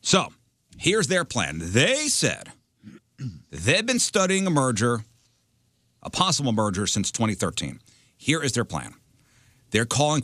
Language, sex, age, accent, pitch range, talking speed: English, male, 50-69, American, 105-135 Hz, 130 wpm